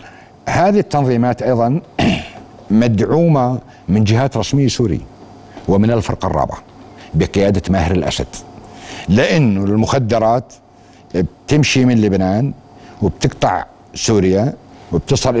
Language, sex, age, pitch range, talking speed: Arabic, male, 60-79, 100-130 Hz, 85 wpm